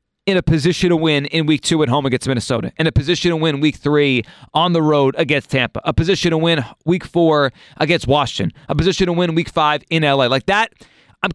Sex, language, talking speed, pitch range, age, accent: male, English, 225 wpm, 145-190 Hz, 30-49, American